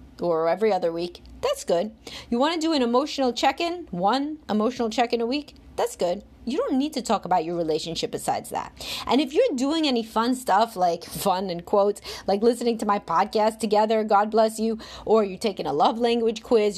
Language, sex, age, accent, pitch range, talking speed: English, female, 30-49, American, 215-290 Hz, 205 wpm